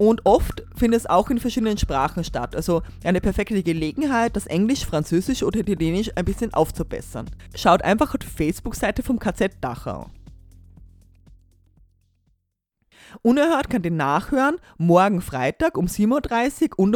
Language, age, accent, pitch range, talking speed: German, 30-49, German, 155-245 Hz, 140 wpm